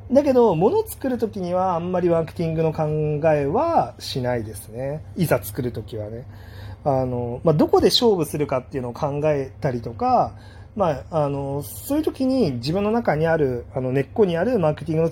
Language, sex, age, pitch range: Japanese, male, 30-49, 125-175 Hz